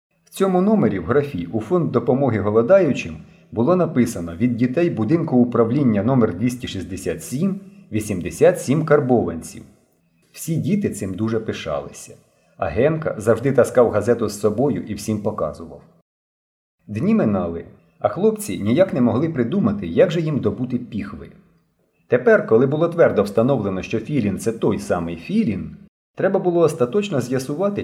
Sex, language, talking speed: male, Ukrainian, 135 wpm